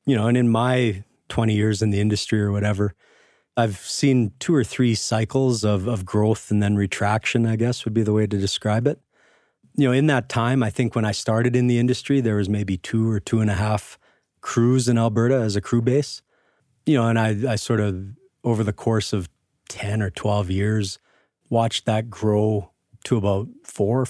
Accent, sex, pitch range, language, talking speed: American, male, 105-125 Hz, English, 205 wpm